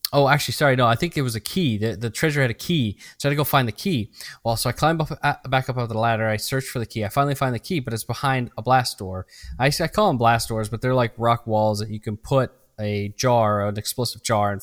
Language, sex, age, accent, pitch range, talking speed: English, male, 20-39, American, 105-130 Hz, 290 wpm